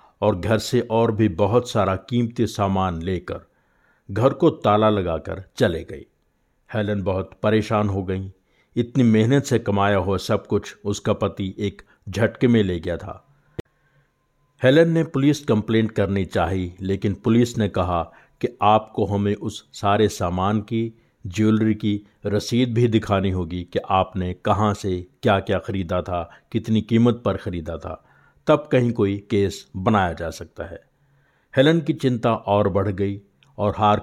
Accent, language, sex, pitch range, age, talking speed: native, Hindi, male, 95-120 Hz, 50-69, 155 wpm